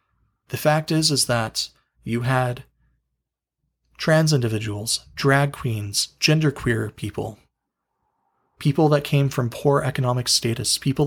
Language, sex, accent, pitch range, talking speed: English, male, American, 110-135 Hz, 115 wpm